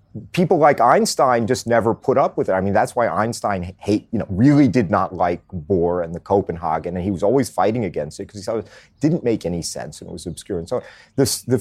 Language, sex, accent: English, male, American